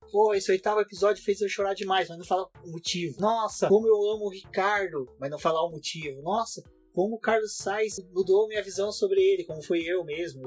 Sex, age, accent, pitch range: male, 20-39, Brazilian, 135-195 Hz